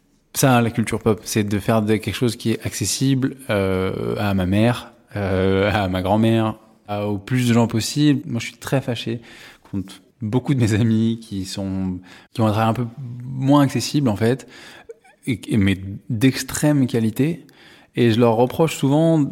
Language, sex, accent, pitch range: French, male, French, 105-135 Hz